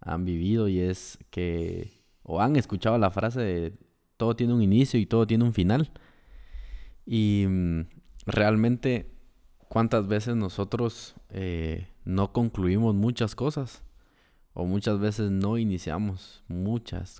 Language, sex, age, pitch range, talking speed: Spanish, male, 20-39, 90-110 Hz, 125 wpm